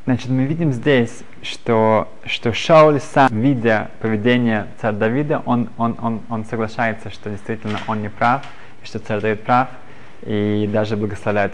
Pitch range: 105-125 Hz